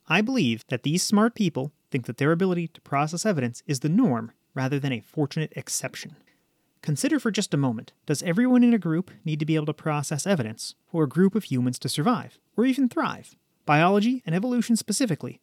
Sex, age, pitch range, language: male, 30-49, 145-215 Hz, English